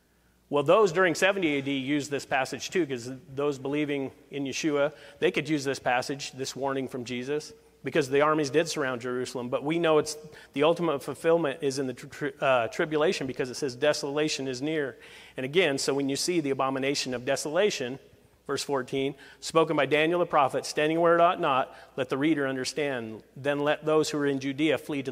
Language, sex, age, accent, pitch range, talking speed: English, male, 40-59, American, 135-170 Hz, 200 wpm